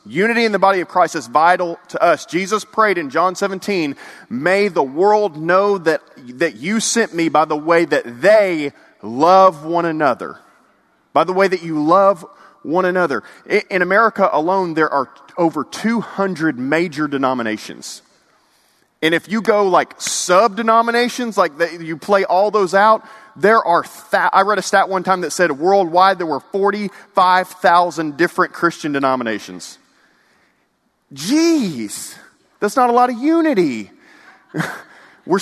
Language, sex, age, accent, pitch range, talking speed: English, male, 30-49, American, 155-200 Hz, 145 wpm